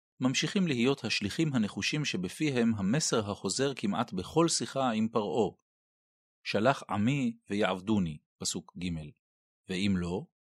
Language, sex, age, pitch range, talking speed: Hebrew, male, 40-59, 105-155 Hz, 110 wpm